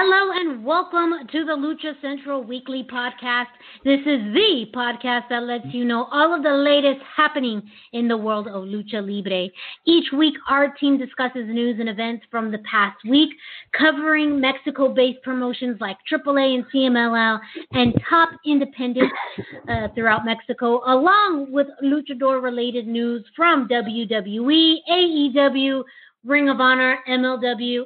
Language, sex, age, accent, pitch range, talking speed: English, female, 30-49, American, 235-290 Hz, 140 wpm